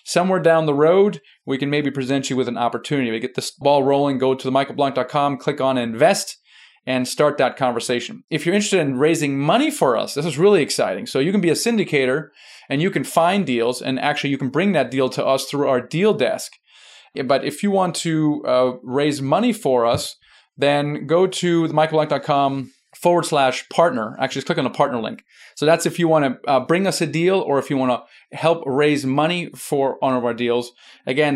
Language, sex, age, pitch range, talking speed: English, male, 30-49, 130-165 Hz, 210 wpm